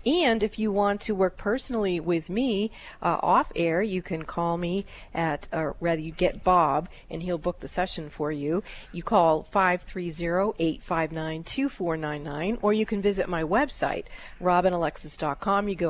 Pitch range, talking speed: 165-205 Hz, 160 wpm